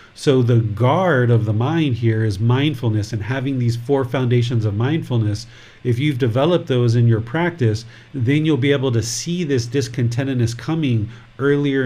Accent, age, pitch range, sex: American, 40-59, 115-130 Hz, male